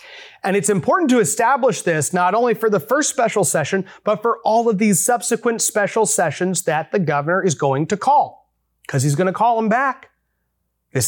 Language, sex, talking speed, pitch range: English, male, 190 wpm, 155-225 Hz